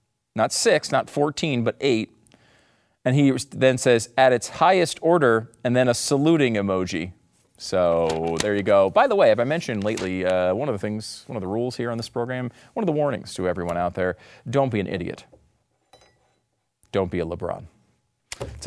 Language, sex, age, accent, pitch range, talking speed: English, male, 40-59, American, 115-190 Hz, 195 wpm